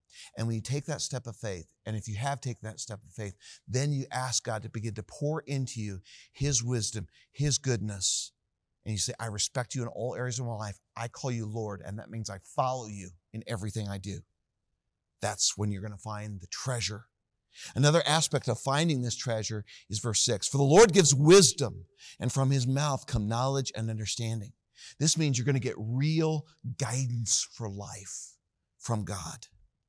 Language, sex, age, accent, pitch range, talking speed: English, male, 40-59, American, 110-140 Hz, 195 wpm